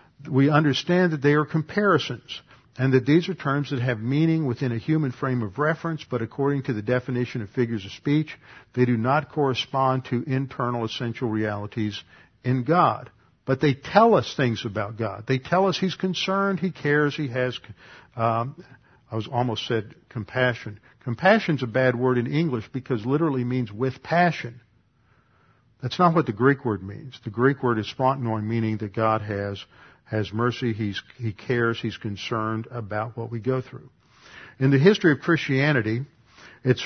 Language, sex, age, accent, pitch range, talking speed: English, male, 50-69, American, 120-150 Hz, 175 wpm